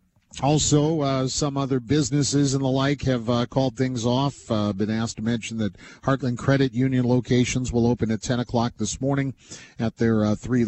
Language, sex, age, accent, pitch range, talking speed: English, male, 50-69, American, 110-135 Hz, 190 wpm